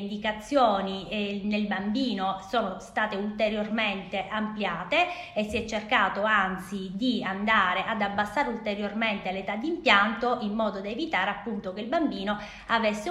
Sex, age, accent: female, 20-39, native